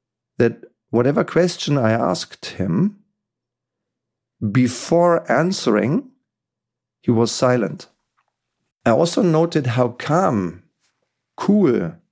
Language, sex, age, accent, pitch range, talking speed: German, male, 40-59, German, 120-155 Hz, 85 wpm